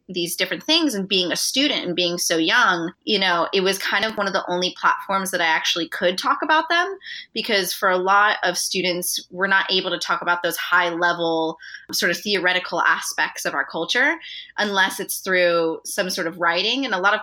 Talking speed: 215 wpm